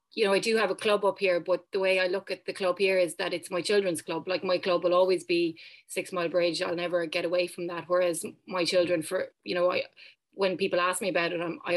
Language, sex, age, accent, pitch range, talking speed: English, female, 30-49, Irish, 175-200 Hz, 275 wpm